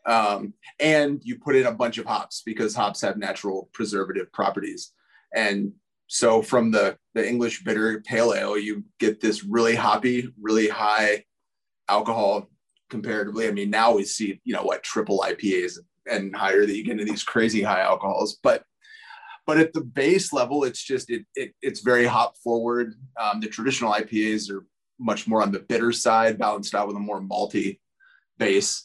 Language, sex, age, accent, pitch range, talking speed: English, male, 30-49, American, 105-130 Hz, 175 wpm